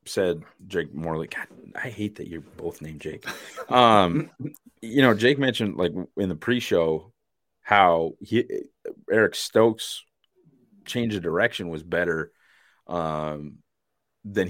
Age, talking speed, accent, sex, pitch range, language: 30-49, 135 wpm, American, male, 75-95 Hz, English